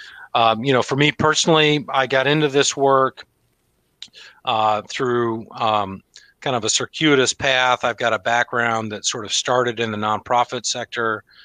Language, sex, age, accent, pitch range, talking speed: English, male, 40-59, American, 105-120 Hz, 160 wpm